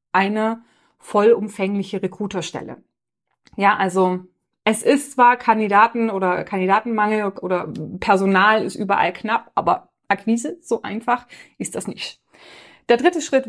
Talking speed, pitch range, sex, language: 115 wpm, 185-245 Hz, female, German